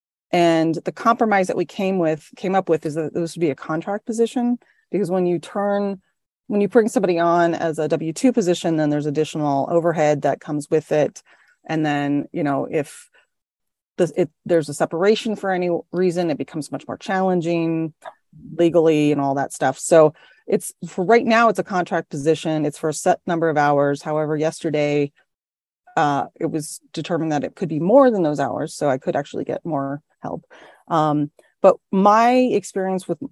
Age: 30-49